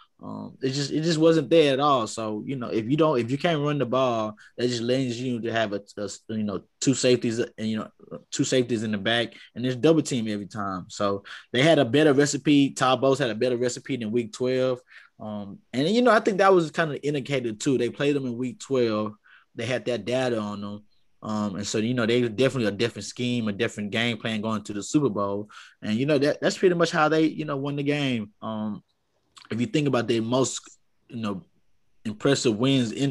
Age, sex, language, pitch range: 20-39, male, English, 110-135 Hz